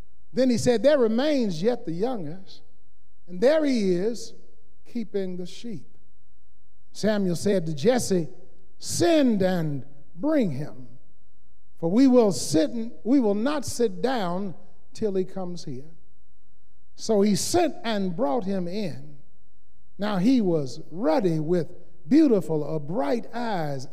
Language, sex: English, male